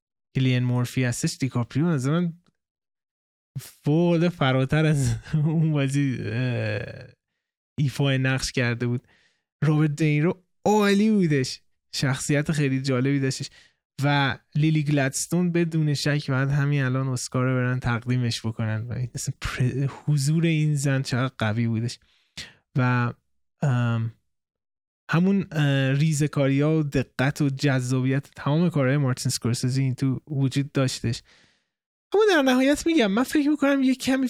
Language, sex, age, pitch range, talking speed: Persian, male, 20-39, 130-175 Hz, 110 wpm